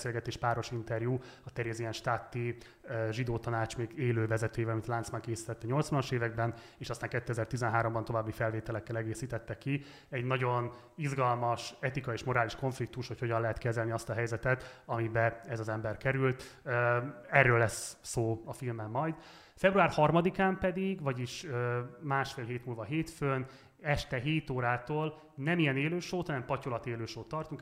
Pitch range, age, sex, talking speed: 115-135 Hz, 30-49, male, 150 wpm